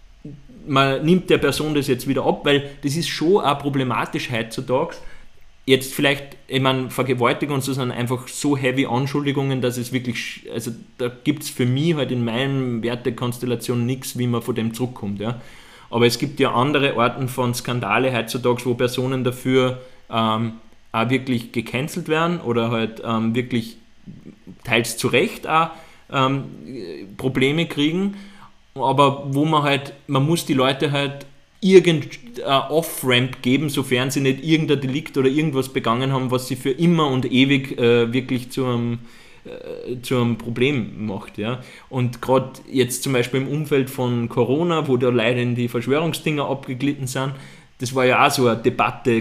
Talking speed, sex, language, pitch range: 165 wpm, male, German, 120-140 Hz